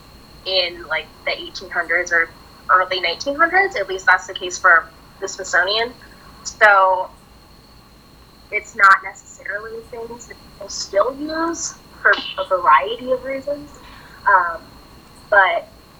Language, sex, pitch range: English, female, 190-285 Hz